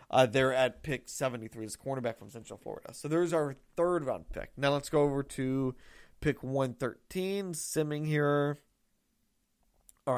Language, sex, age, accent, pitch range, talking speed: English, male, 30-49, American, 130-160 Hz, 155 wpm